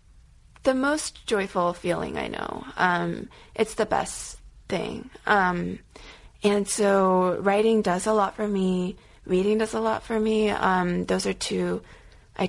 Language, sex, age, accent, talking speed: English, female, 30-49, American, 150 wpm